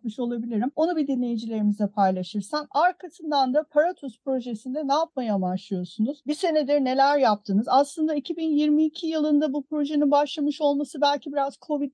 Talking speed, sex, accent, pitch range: 130 wpm, female, native, 230-295 Hz